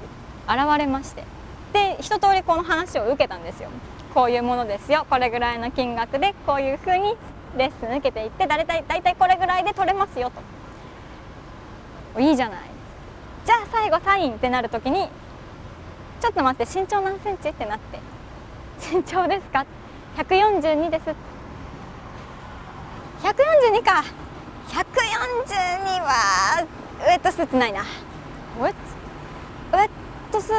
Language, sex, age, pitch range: Japanese, male, 20-39, 280-390 Hz